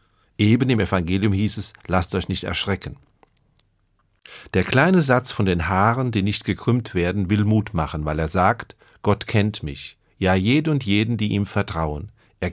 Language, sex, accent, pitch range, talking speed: German, male, German, 90-115 Hz, 170 wpm